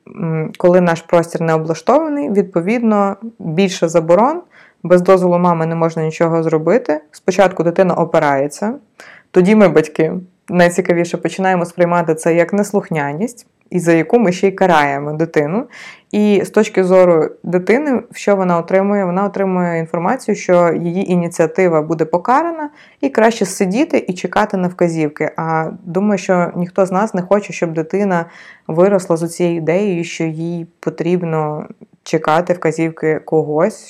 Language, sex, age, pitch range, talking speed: Ukrainian, female, 20-39, 160-200 Hz, 140 wpm